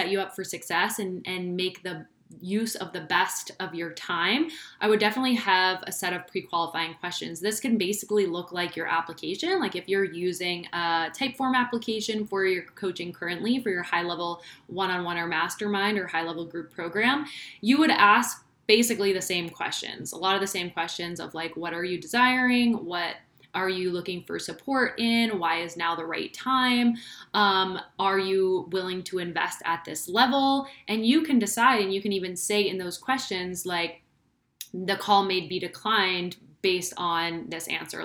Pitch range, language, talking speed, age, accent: 170-205 Hz, English, 185 wpm, 20-39, American